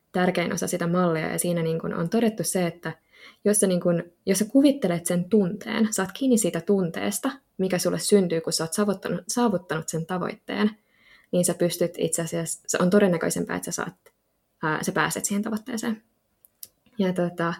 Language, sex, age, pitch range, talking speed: Finnish, female, 20-39, 175-210 Hz, 150 wpm